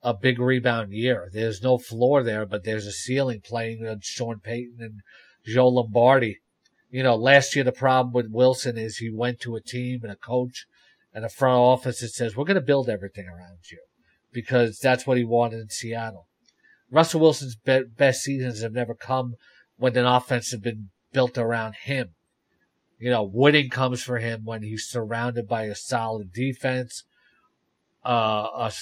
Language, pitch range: English, 115-130 Hz